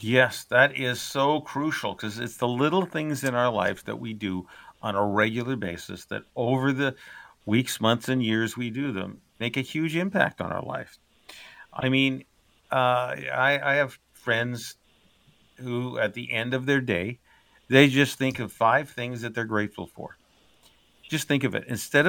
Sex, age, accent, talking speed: male, 50-69, American, 180 wpm